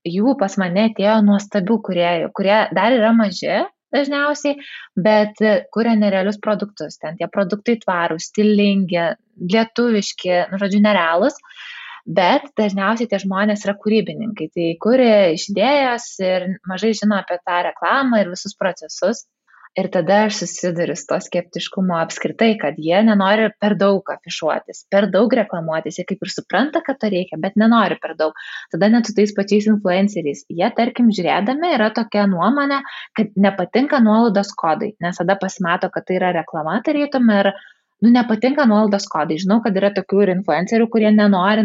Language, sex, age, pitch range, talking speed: English, female, 20-39, 185-220 Hz, 155 wpm